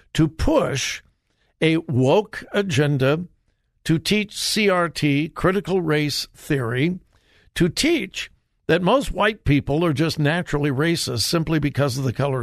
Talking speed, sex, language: 125 wpm, male, English